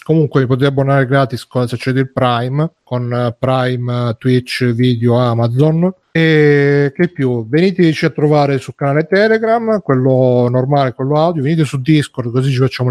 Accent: native